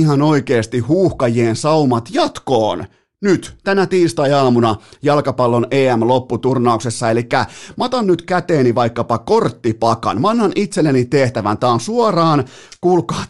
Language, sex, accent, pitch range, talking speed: Finnish, male, native, 120-170 Hz, 110 wpm